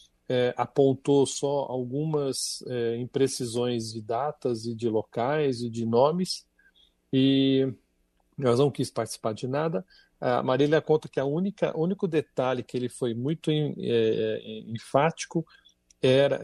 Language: Portuguese